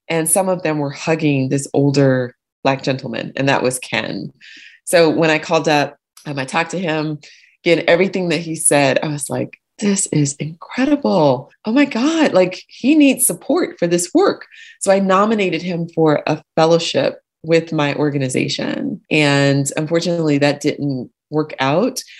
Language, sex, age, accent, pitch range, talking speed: English, female, 30-49, American, 150-185 Hz, 165 wpm